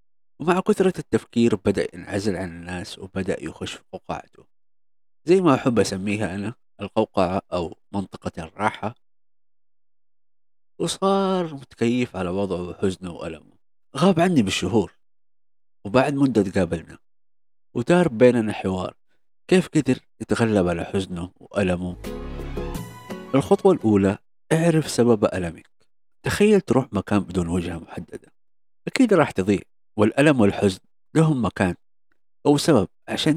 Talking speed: 110 wpm